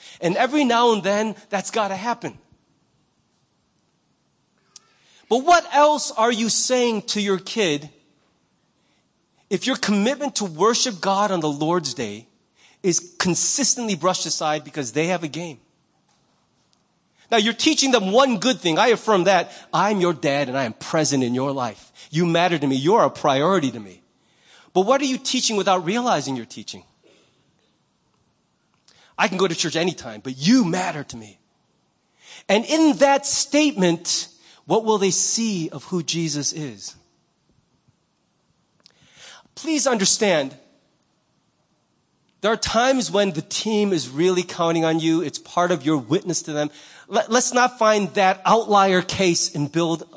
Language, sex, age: English, male, 30-49